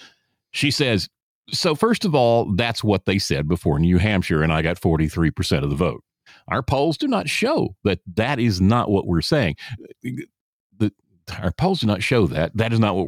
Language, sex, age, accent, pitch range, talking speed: English, male, 50-69, American, 90-125 Hz, 200 wpm